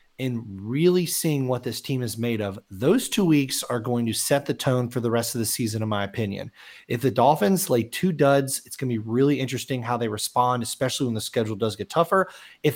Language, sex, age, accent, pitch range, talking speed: English, male, 30-49, American, 120-155 Hz, 235 wpm